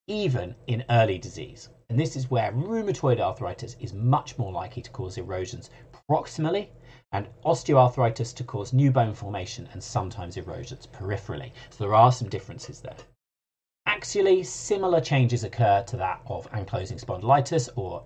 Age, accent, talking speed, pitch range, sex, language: 40-59, British, 150 wpm, 115-135 Hz, male, English